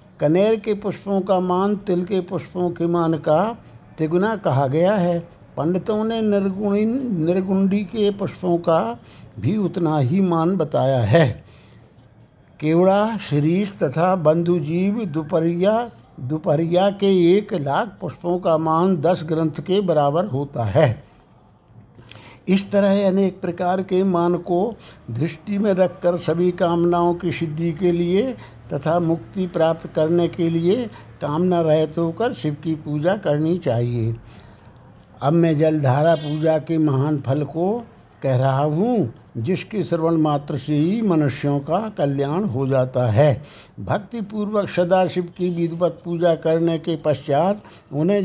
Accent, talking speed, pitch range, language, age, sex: native, 135 wpm, 150-190 Hz, Hindi, 60-79, male